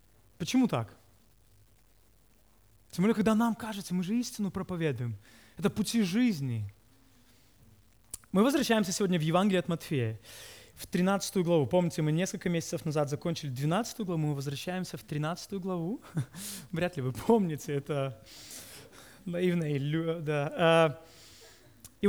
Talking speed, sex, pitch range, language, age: 120 wpm, male, 135-220 Hz, Russian, 20-39